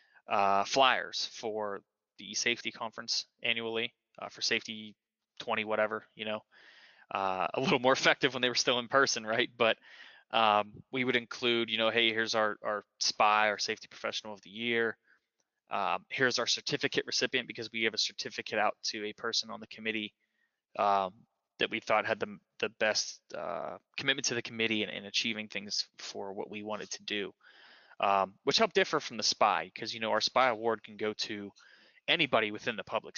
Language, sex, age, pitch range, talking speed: English, male, 20-39, 105-115 Hz, 190 wpm